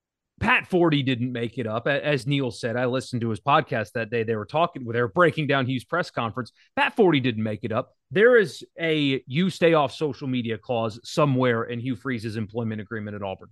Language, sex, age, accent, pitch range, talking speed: English, male, 30-49, American, 115-150 Hz, 215 wpm